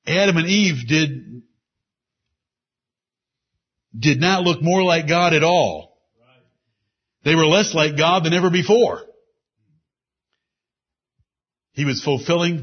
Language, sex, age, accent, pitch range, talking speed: English, male, 60-79, American, 150-210 Hz, 110 wpm